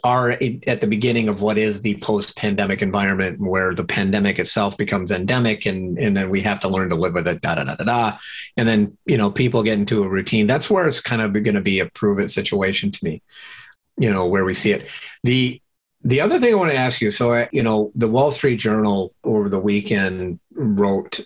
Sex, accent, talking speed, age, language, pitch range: male, American, 215 wpm, 50-69, English, 100-120 Hz